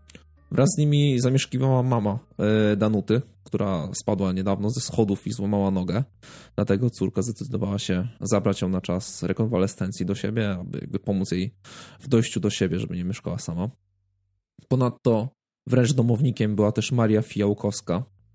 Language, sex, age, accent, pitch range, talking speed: Polish, male, 20-39, native, 100-120 Hz, 140 wpm